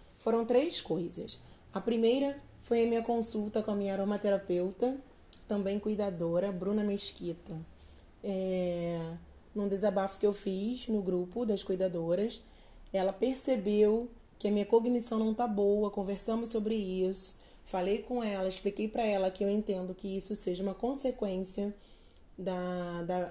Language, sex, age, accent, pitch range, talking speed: Portuguese, female, 20-39, Brazilian, 185-220 Hz, 140 wpm